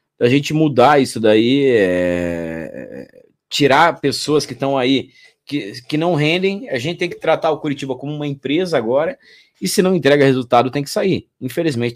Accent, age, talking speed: Brazilian, 20-39, 175 wpm